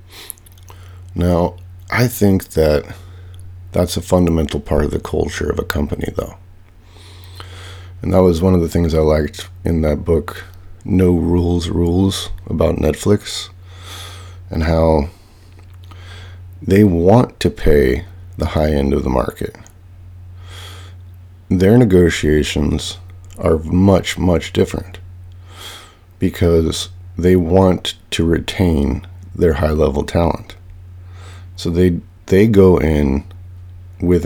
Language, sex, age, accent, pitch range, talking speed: English, male, 50-69, American, 85-90 Hz, 110 wpm